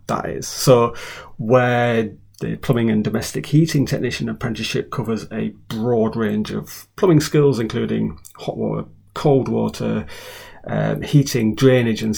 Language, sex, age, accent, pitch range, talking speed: English, male, 30-49, British, 110-135 Hz, 135 wpm